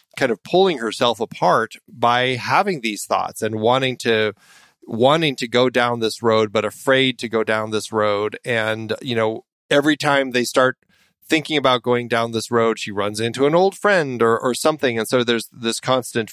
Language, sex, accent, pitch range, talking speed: English, male, American, 110-135 Hz, 190 wpm